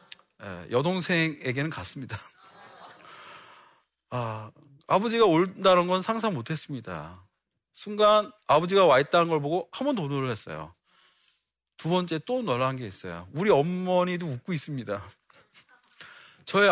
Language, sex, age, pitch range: Korean, male, 40-59, 125-195 Hz